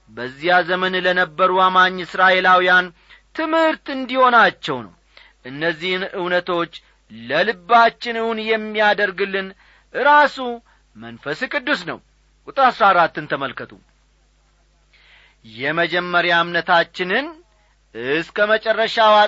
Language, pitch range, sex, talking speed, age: Amharic, 165-240 Hz, male, 70 wpm, 40-59